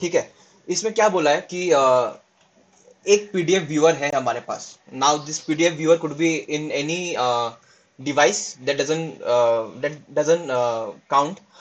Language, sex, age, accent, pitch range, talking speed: English, male, 20-39, Indian, 155-205 Hz, 145 wpm